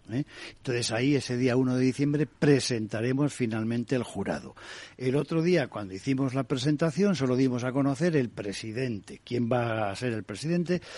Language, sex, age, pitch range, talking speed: Spanish, male, 60-79, 110-145 Hz, 170 wpm